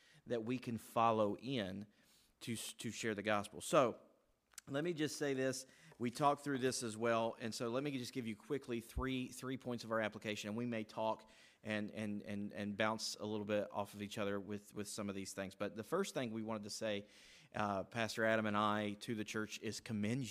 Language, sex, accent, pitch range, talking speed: English, male, American, 105-120 Hz, 225 wpm